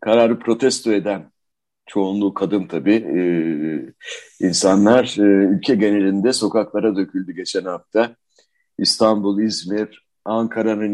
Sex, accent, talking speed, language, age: male, native, 100 wpm, Turkish, 60-79